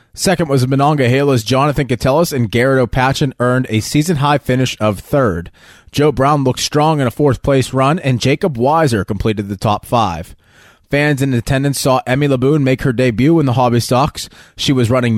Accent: American